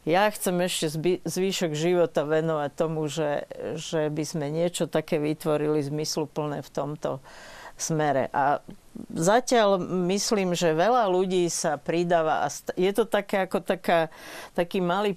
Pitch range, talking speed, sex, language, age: 165-205 Hz, 140 wpm, female, Slovak, 50-69